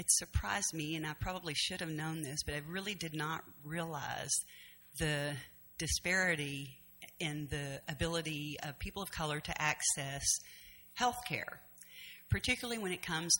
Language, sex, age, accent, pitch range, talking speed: English, female, 50-69, American, 150-185 Hz, 150 wpm